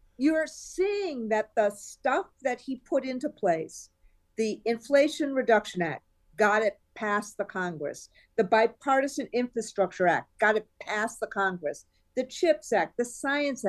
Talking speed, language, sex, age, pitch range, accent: 145 wpm, English, female, 50-69, 215-310 Hz, American